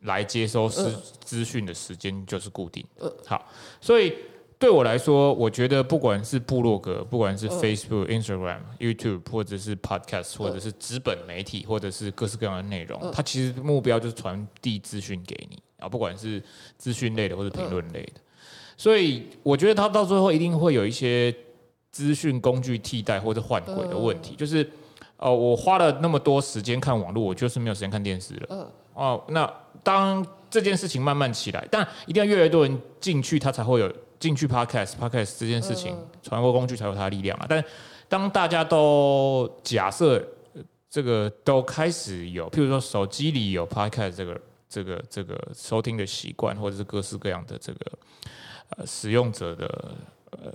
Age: 20-39